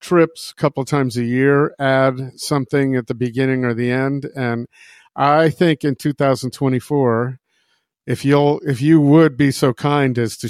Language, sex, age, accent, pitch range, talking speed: English, male, 50-69, American, 125-155 Hz, 170 wpm